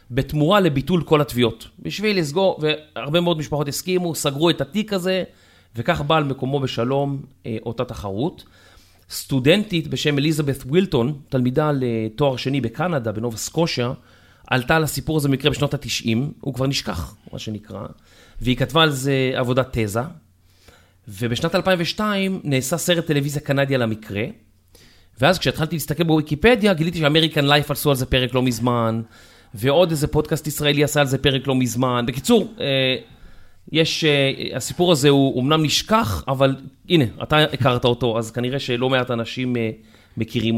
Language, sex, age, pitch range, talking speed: Hebrew, male, 30-49, 115-155 Hz, 140 wpm